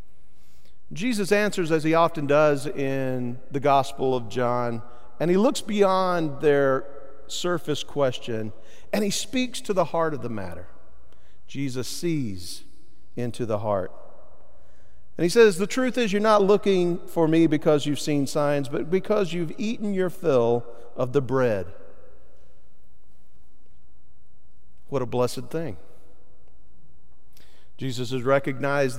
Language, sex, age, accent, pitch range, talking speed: English, male, 50-69, American, 115-175 Hz, 130 wpm